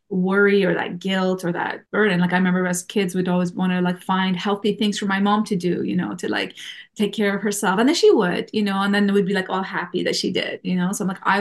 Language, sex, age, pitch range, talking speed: English, female, 30-49, 185-220 Hz, 295 wpm